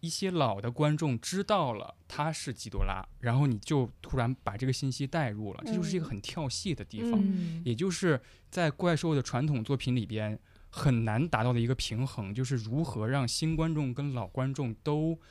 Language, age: Chinese, 20-39